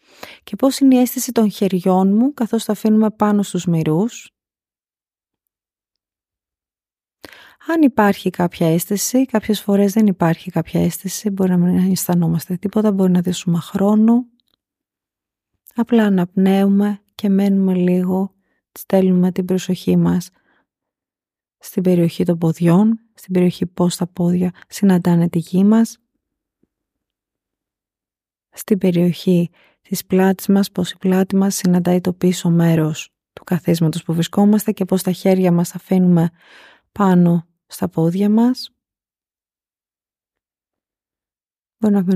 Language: Greek